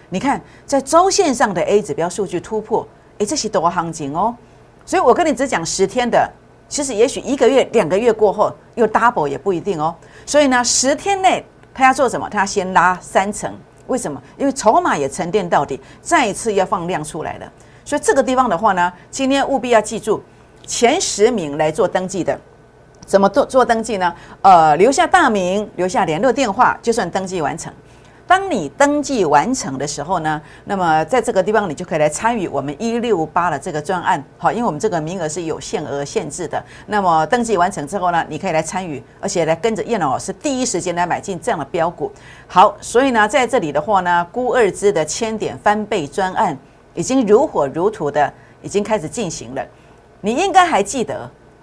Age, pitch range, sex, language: 50-69, 170-245 Hz, female, Chinese